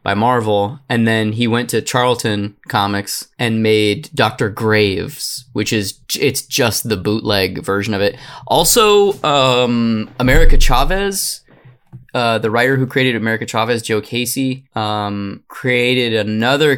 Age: 20-39